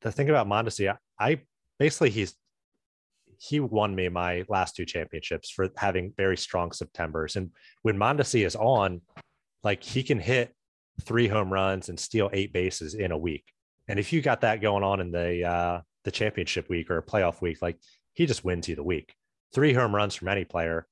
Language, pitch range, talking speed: English, 85-105 Hz, 200 wpm